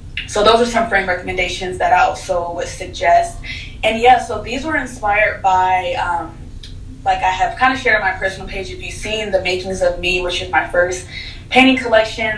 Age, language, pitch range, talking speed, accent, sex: 20-39, English, 175-215 Hz, 205 wpm, American, female